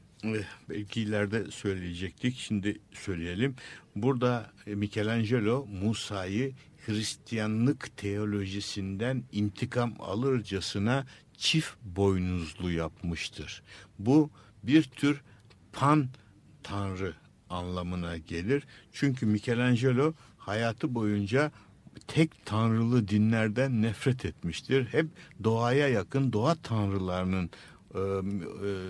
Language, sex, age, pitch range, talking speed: Turkish, male, 60-79, 100-130 Hz, 75 wpm